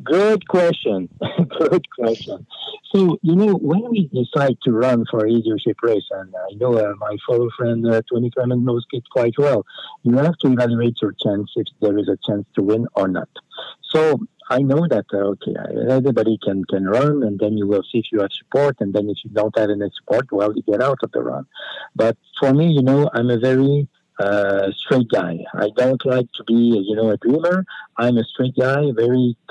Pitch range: 110-135 Hz